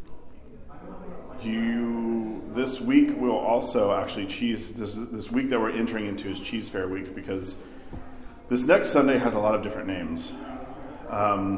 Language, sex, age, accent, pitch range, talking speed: English, male, 40-59, American, 95-115 Hz, 150 wpm